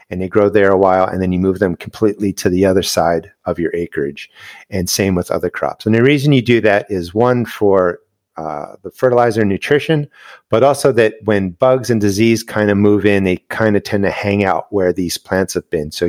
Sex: male